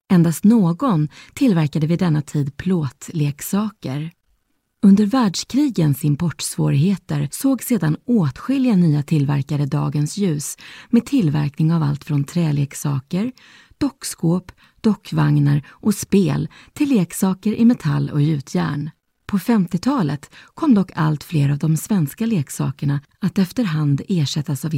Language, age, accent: Swedish, 30-49, native